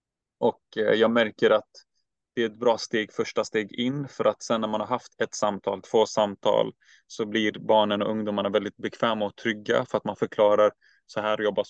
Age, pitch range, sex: 20-39, 105-120 Hz, male